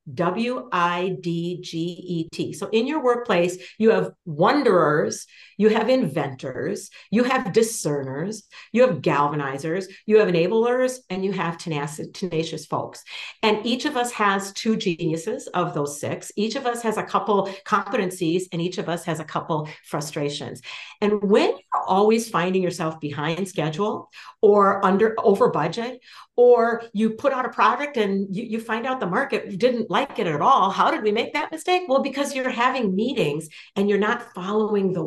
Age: 50-69